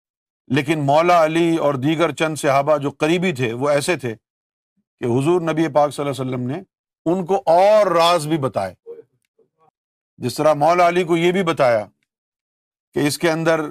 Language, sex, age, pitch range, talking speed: Urdu, male, 50-69, 140-190 Hz, 175 wpm